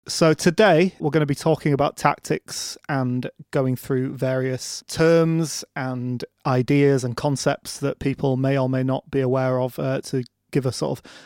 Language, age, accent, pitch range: English, 30-49, British, 130-150 Hz